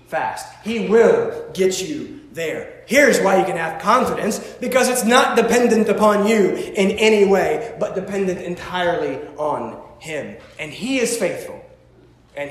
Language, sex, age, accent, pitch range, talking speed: English, male, 30-49, American, 190-255 Hz, 150 wpm